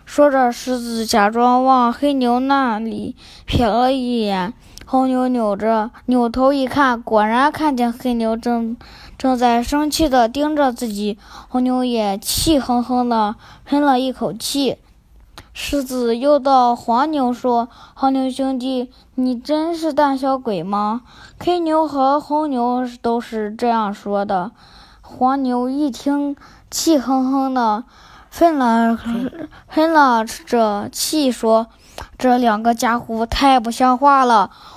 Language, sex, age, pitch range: Chinese, female, 20-39, 235-280 Hz